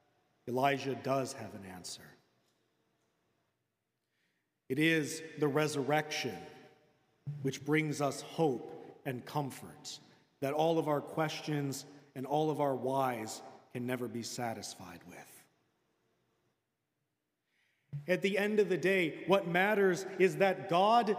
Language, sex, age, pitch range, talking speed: English, male, 40-59, 155-200 Hz, 115 wpm